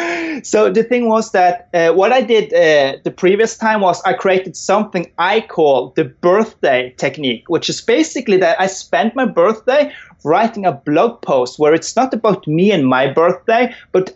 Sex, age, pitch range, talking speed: male, 30-49, 175-225 Hz, 180 wpm